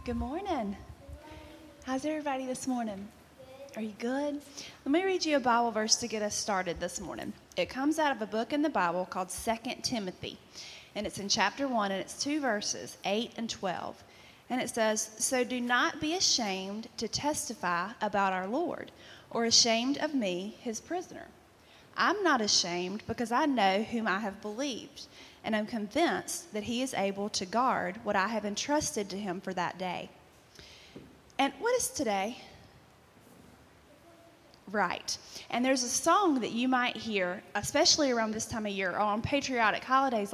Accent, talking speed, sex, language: American, 175 wpm, female, English